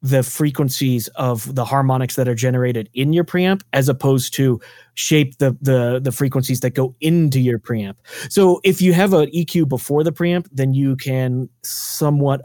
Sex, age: male, 30-49